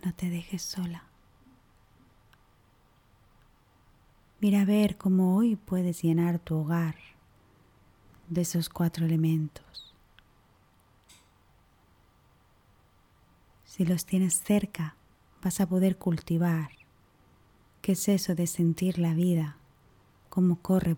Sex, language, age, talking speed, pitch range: female, Spanish, 30-49, 95 wpm, 145-180 Hz